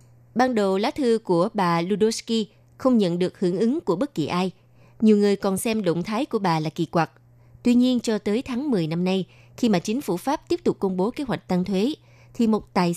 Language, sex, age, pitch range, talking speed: Vietnamese, female, 20-39, 160-220 Hz, 235 wpm